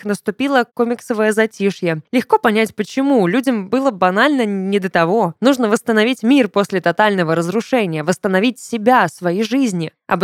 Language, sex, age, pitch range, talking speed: Russian, female, 20-39, 200-260 Hz, 135 wpm